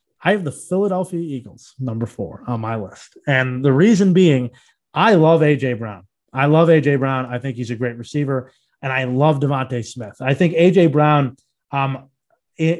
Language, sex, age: English, male, 30-49